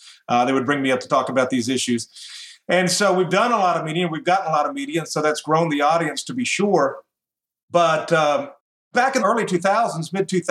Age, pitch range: 40-59, 125-160 Hz